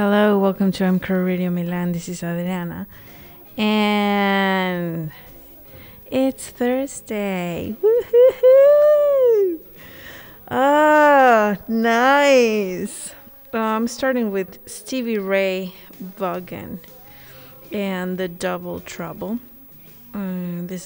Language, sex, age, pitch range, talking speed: English, female, 30-49, 180-235 Hz, 80 wpm